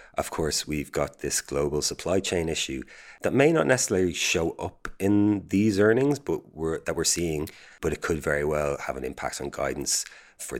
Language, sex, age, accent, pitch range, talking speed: English, male, 30-49, Irish, 75-85 Hz, 190 wpm